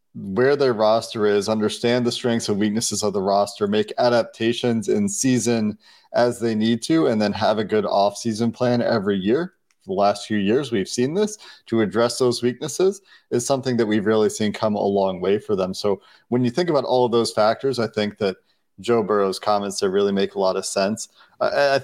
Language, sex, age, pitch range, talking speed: English, male, 30-49, 105-125 Hz, 210 wpm